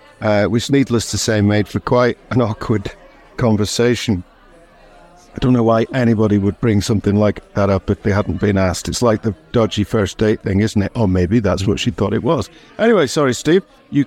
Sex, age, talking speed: male, 50-69, 205 wpm